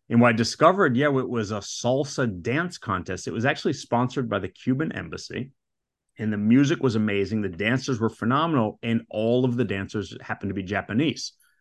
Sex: male